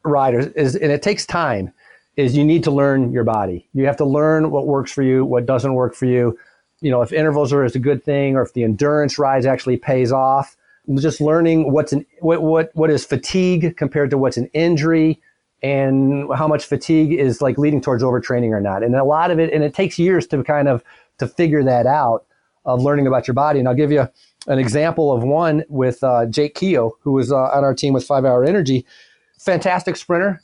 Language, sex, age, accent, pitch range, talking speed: English, male, 40-59, American, 135-160 Hz, 225 wpm